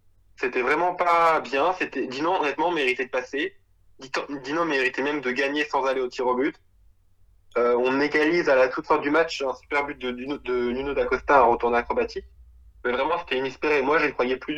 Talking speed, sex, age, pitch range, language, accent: 200 wpm, male, 20-39, 120-165 Hz, French, French